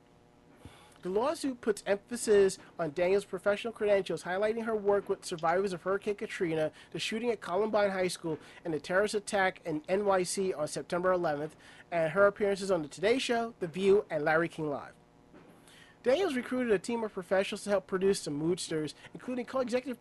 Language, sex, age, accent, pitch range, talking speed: English, male, 40-59, American, 175-215 Hz, 170 wpm